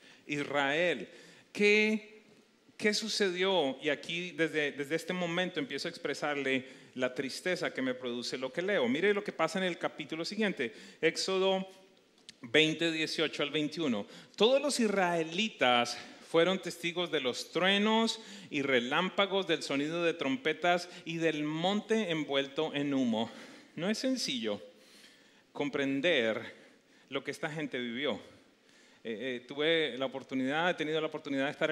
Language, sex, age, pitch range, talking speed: English, male, 40-59, 145-210 Hz, 140 wpm